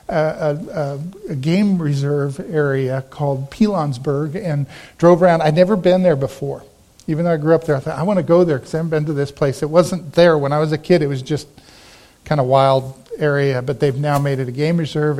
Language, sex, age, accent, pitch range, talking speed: English, male, 50-69, American, 145-180 Hz, 230 wpm